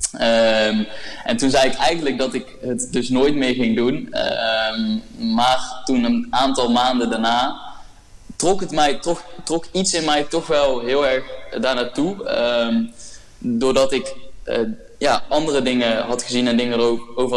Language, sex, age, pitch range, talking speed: Dutch, male, 20-39, 120-155 Hz, 135 wpm